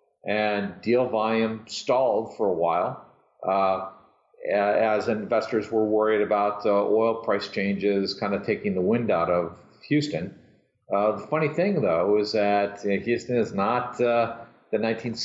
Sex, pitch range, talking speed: male, 105-140 Hz, 145 wpm